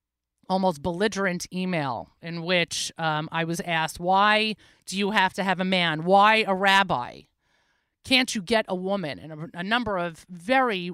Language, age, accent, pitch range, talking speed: English, 30-49, American, 155-205 Hz, 170 wpm